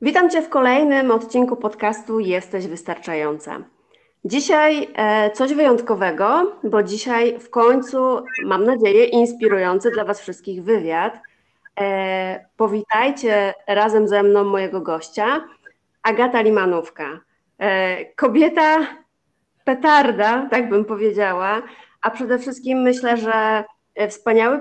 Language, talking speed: Polish, 100 wpm